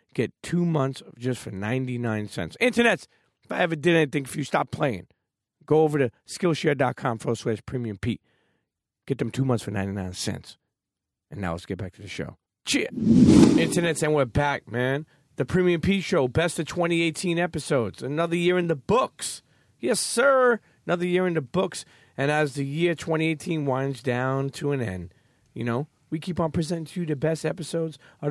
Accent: American